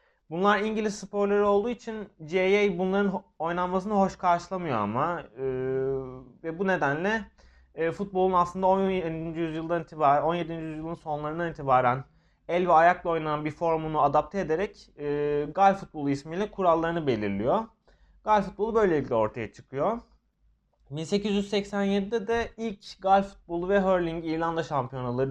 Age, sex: 30-49, male